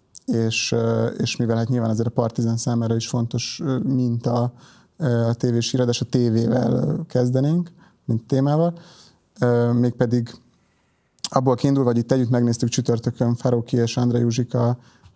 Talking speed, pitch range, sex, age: 125 wpm, 115-125 Hz, male, 30-49